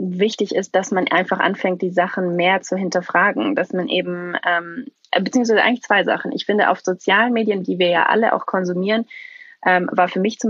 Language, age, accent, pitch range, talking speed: German, 20-39, German, 175-220 Hz, 200 wpm